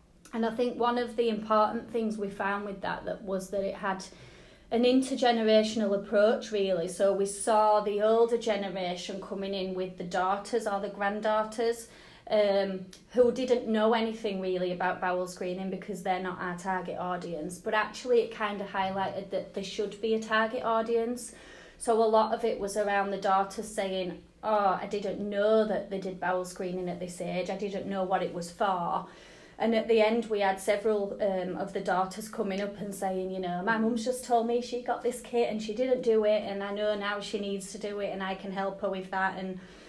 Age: 30-49